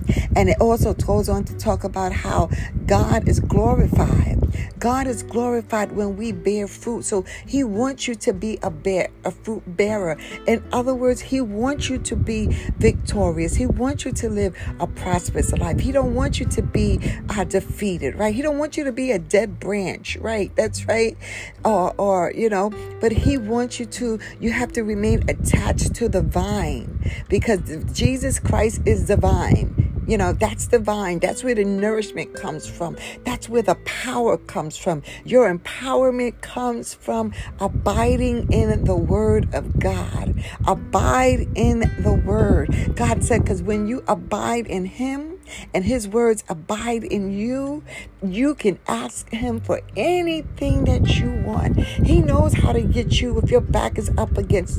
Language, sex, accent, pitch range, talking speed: English, female, American, 180-245 Hz, 170 wpm